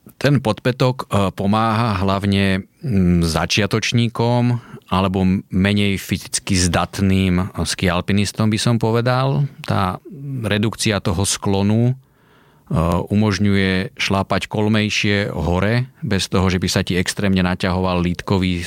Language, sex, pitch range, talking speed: Slovak, male, 90-110 Hz, 100 wpm